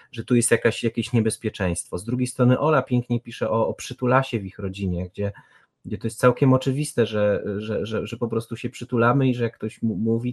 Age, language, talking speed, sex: 30-49, Polish, 205 wpm, male